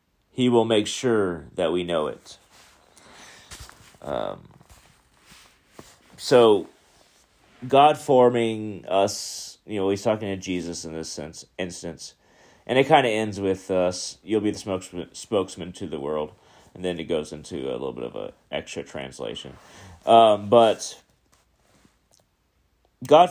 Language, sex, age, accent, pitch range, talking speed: English, male, 30-49, American, 95-125 Hz, 140 wpm